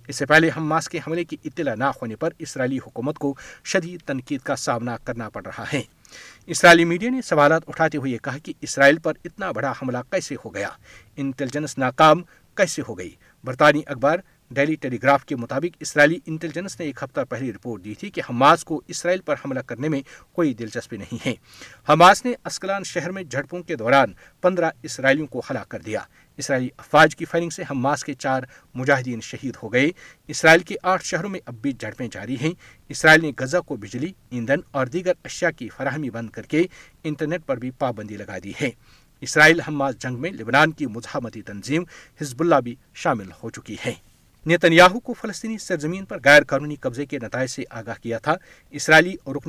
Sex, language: male, Urdu